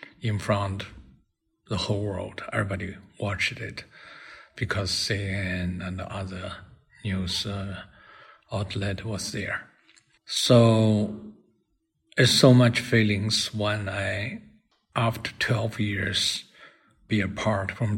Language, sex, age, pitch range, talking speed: English, male, 50-69, 100-110 Hz, 100 wpm